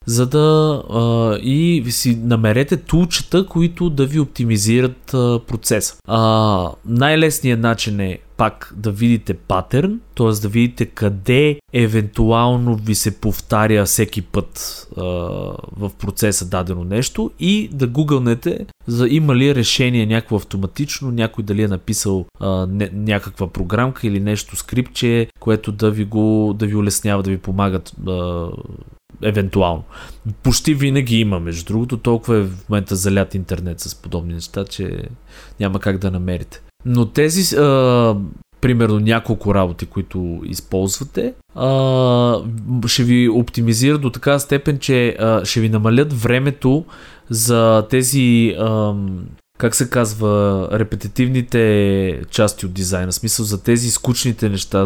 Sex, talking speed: male, 135 wpm